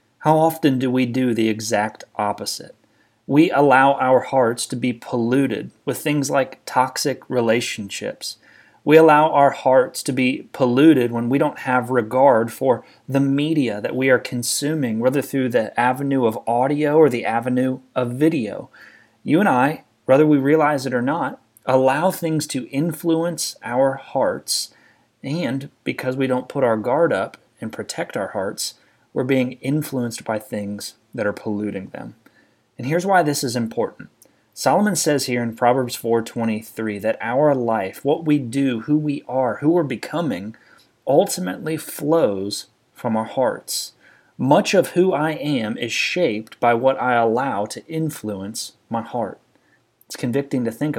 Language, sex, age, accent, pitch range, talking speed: English, male, 30-49, American, 115-145 Hz, 160 wpm